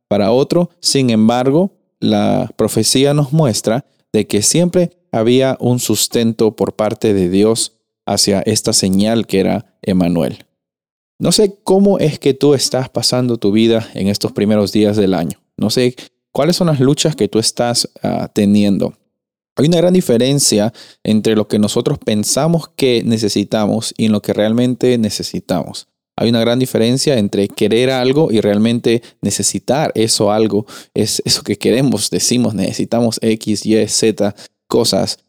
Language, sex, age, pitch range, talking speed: Spanish, male, 30-49, 105-130 Hz, 150 wpm